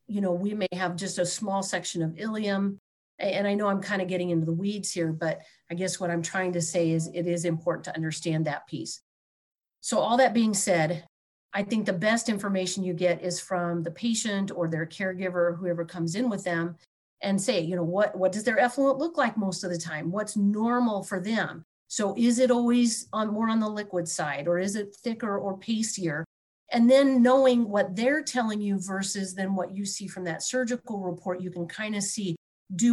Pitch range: 175-220 Hz